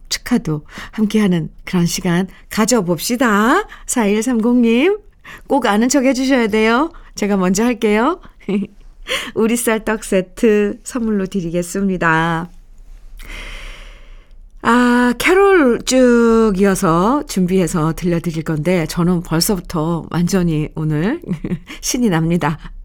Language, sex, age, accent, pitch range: Korean, female, 50-69, native, 170-240 Hz